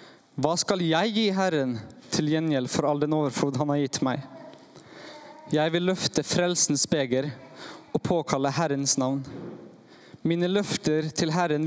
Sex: male